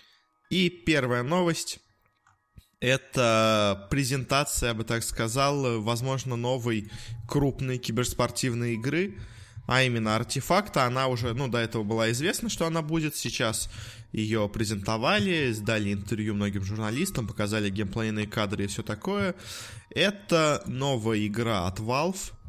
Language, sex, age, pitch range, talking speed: Russian, male, 20-39, 105-130 Hz, 120 wpm